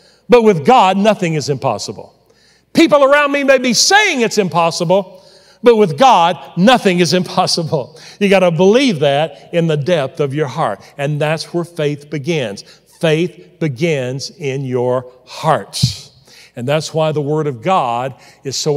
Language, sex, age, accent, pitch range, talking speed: English, male, 50-69, American, 140-190 Hz, 155 wpm